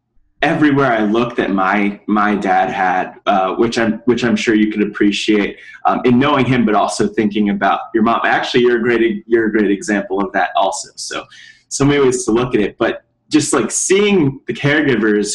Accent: American